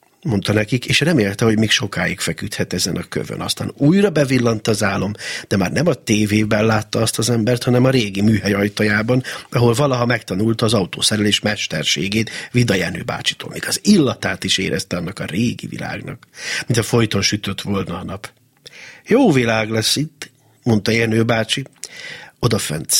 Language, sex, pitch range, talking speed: Hungarian, male, 100-130 Hz, 165 wpm